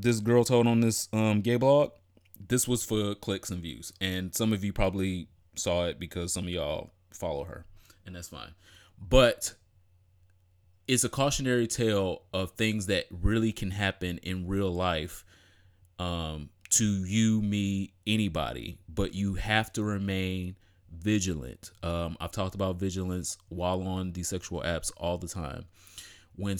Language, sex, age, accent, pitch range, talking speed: English, male, 20-39, American, 90-110 Hz, 155 wpm